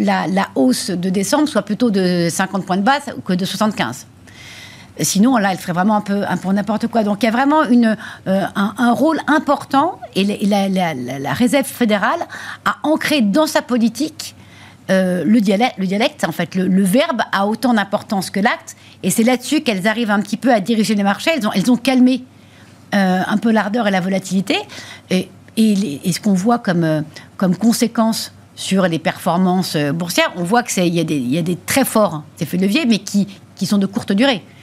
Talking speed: 210 wpm